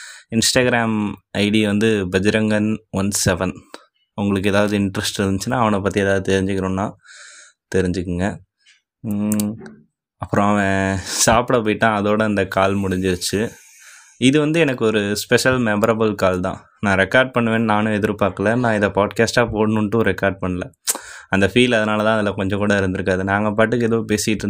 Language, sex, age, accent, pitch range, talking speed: Tamil, male, 20-39, native, 95-115 Hz, 130 wpm